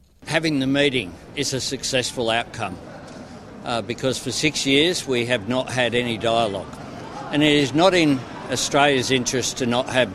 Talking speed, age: 165 wpm, 60-79